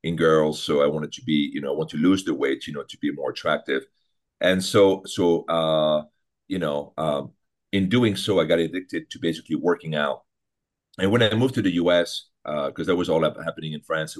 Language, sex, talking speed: English, male, 225 wpm